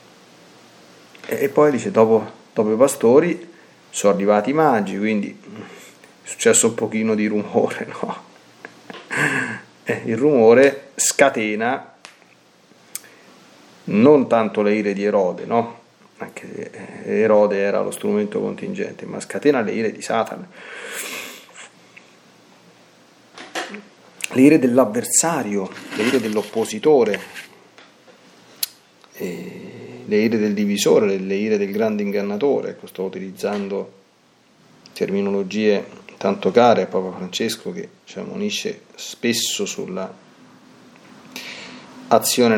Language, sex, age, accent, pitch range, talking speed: Italian, male, 30-49, native, 100-135 Hz, 100 wpm